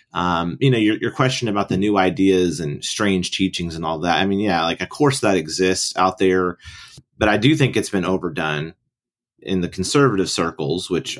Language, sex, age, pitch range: English, male, 30-49, 85-110 Hz